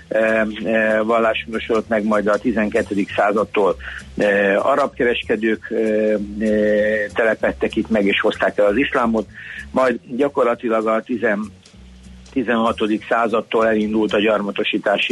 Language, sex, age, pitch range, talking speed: Hungarian, male, 60-79, 105-115 Hz, 115 wpm